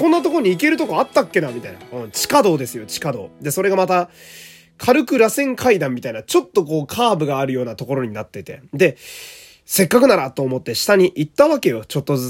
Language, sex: Japanese, male